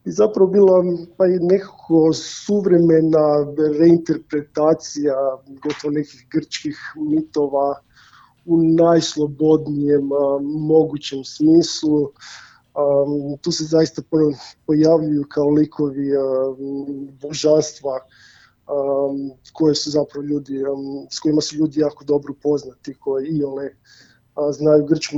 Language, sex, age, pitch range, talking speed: Croatian, male, 20-39, 140-160 Hz, 95 wpm